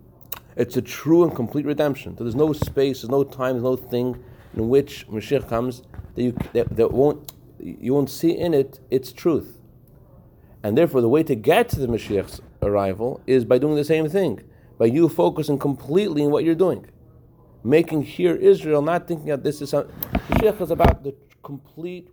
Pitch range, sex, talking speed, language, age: 115-150 Hz, male, 190 wpm, English, 40-59